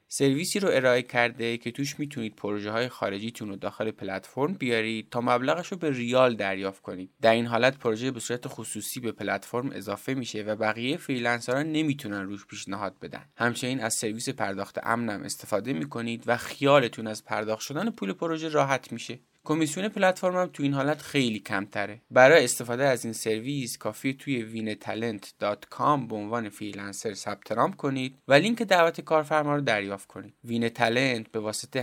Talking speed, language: 165 wpm, Persian